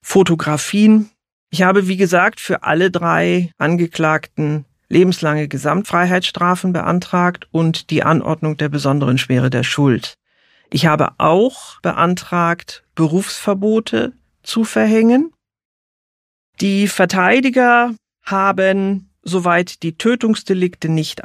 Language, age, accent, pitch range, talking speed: German, 40-59, German, 160-200 Hz, 95 wpm